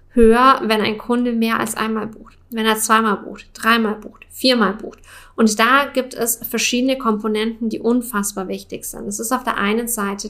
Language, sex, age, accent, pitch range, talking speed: English, female, 10-29, German, 205-230 Hz, 185 wpm